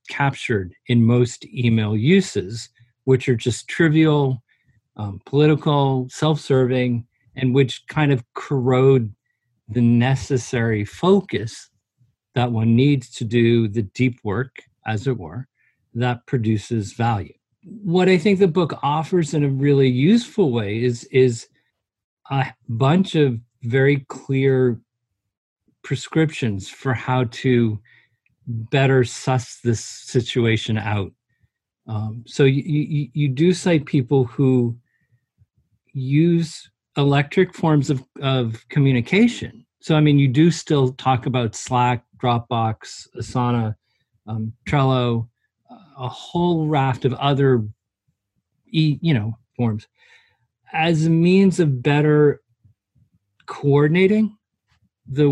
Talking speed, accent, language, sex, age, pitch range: 115 wpm, American, English, male, 40-59, 115-145 Hz